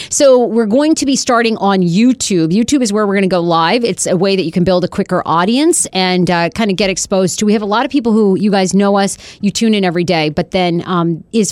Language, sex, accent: English, female, American